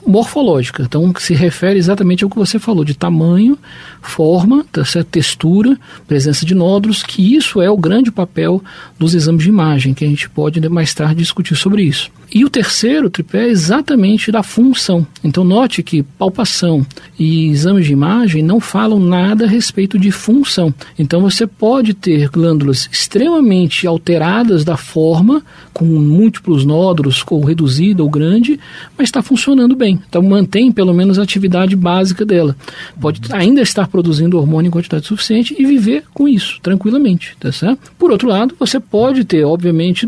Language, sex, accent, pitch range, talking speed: Portuguese, male, Brazilian, 160-220 Hz, 160 wpm